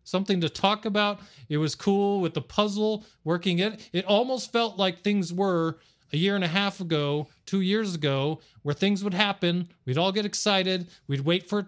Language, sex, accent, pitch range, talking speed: English, male, American, 150-195 Hz, 200 wpm